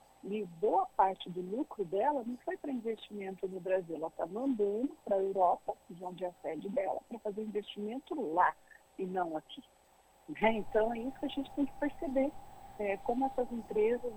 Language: Portuguese